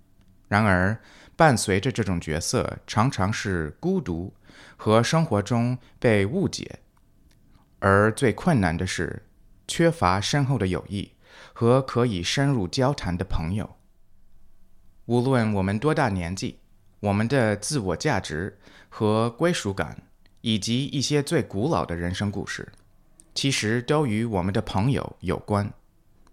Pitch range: 95-125 Hz